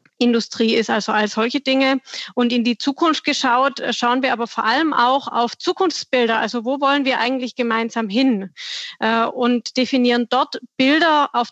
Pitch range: 220-260 Hz